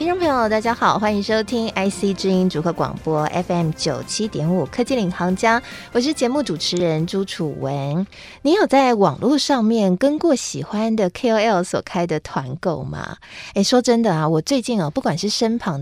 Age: 20-39